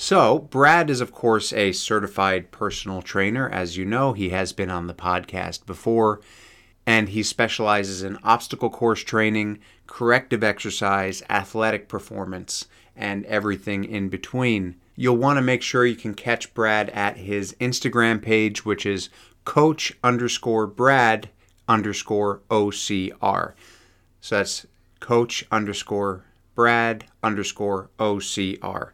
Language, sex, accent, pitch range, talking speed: English, male, American, 100-120 Hz, 125 wpm